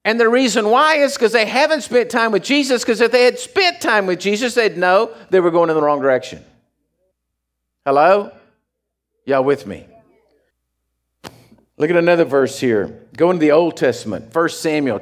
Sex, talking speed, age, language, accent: male, 180 wpm, 50-69, English, American